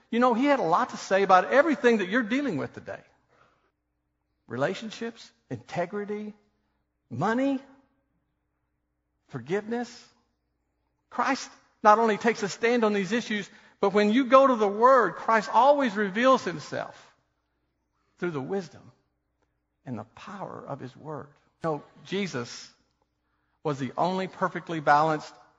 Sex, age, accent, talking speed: male, 50-69, American, 135 wpm